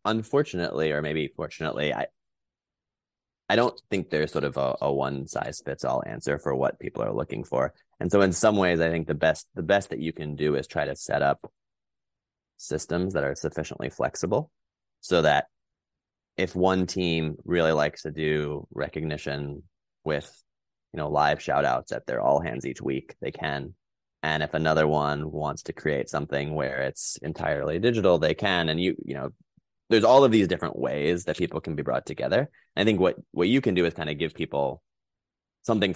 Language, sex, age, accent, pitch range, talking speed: English, male, 20-39, American, 75-90 Hz, 195 wpm